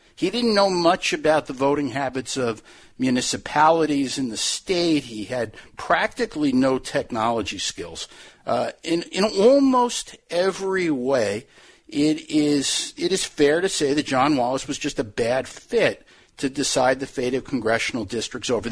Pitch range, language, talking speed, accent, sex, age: 135-210 Hz, English, 155 wpm, American, male, 50-69